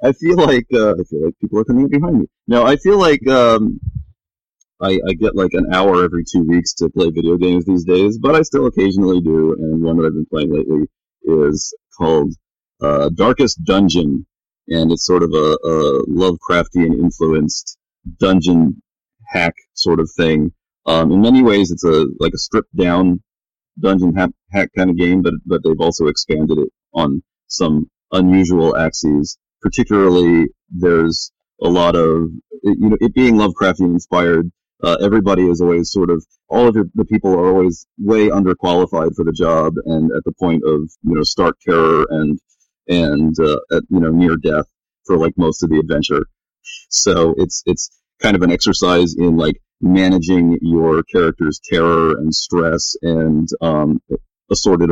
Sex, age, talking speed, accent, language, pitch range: male, 30-49, 170 wpm, American, English, 80-100 Hz